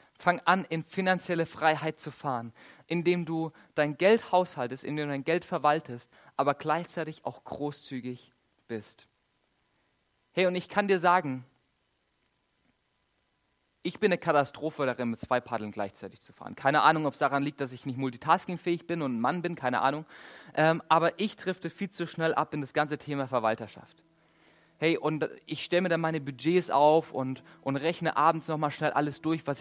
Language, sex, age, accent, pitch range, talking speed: German, male, 30-49, German, 145-175 Hz, 175 wpm